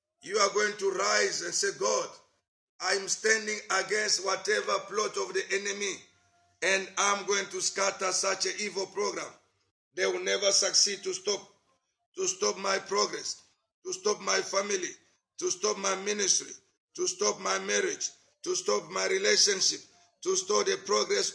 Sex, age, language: male, 50-69, English